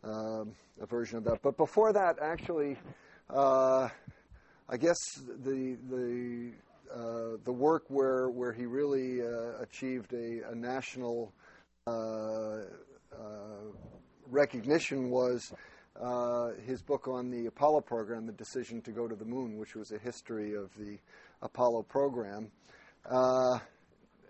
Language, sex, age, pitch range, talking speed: English, male, 50-69, 110-125 Hz, 130 wpm